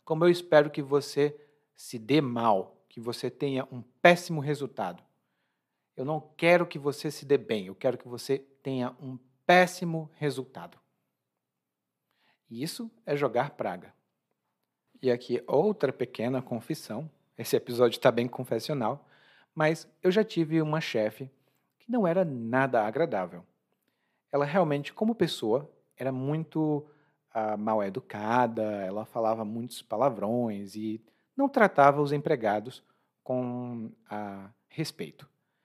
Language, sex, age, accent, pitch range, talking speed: Portuguese, male, 40-59, Brazilian, 120-155 Hz, 130 wpm